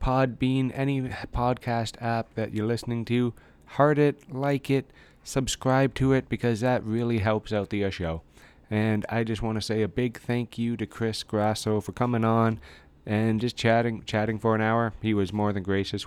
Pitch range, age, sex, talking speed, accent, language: 100-125 Hz, 20-39, male, 185 wpm, American, English